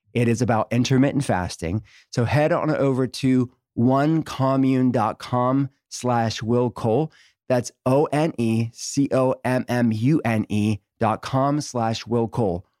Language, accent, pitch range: English, American, 115-135 Hz